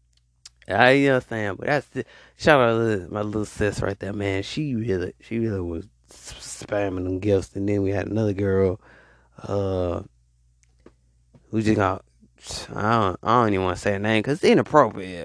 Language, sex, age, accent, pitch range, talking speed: English, male, 20-39, American, 95-130 Hz, 195 wpm